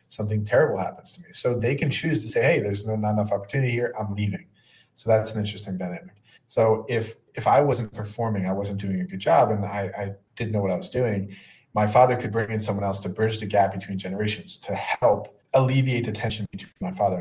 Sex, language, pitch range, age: male, English, 100-120 Hz, 30-49